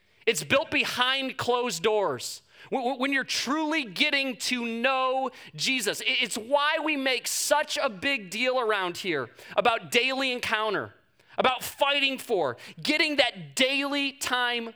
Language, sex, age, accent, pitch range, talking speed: English, male, 30-49, American, 225-280 Hz, 130 wpm